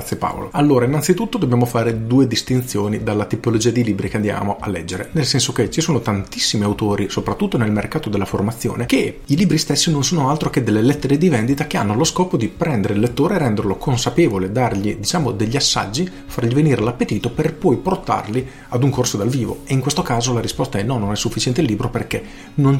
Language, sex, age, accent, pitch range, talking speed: Italian, male, 40-59, native, 110-135 Hz, 215 wpm